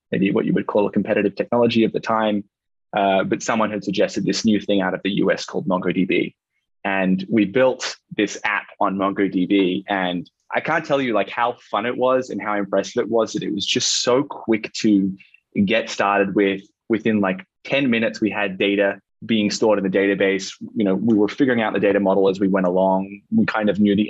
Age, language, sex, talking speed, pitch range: 20-39, English, male, 215 wpm, 95-110 Hz